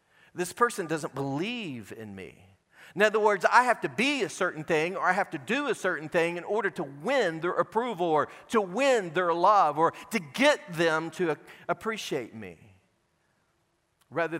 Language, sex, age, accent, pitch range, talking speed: English, male, 40-59, American, 145-205 Hz, 180 wpm